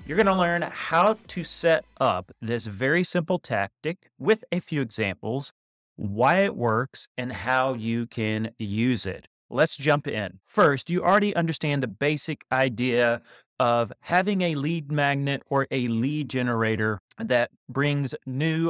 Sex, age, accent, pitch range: male, 30-49, American, 120-160 Hz